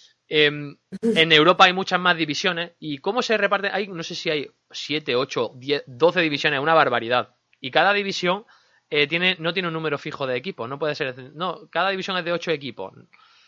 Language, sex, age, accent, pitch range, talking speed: Spanish, male, 20-39, Spanish, 135-180 Hz, 195 wpm